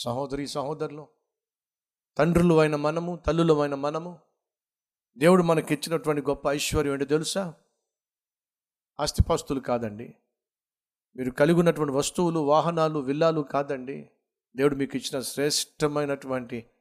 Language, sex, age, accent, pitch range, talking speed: Telugu, male, 50-69, native, 140-215 Hz, 90 wpm